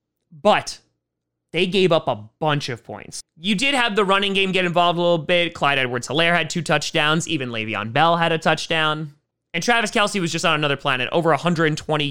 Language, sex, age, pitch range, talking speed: English, male, 30-49, 145-205 Hz, 200 wpm